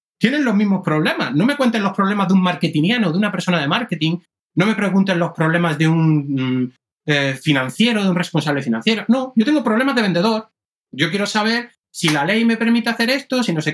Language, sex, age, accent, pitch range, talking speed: English, male, 30-49, Spanish, 140-200 Hz, 215 wpm